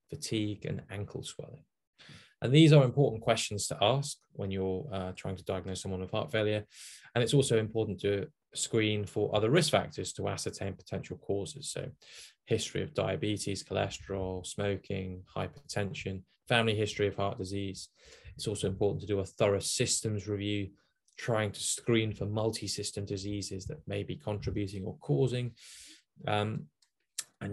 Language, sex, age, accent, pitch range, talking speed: English, male, 20-39, British, 95-115 Hz, 150 wpm